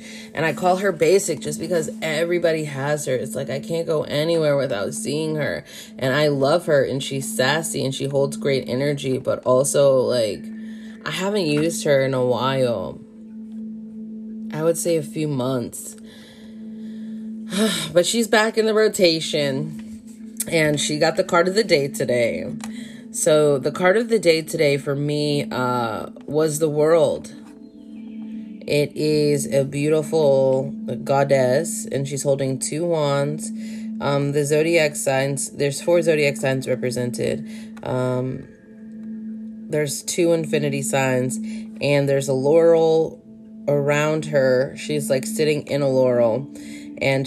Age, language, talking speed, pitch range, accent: 20-39, English, 140 wpm, 135-220 Hz, American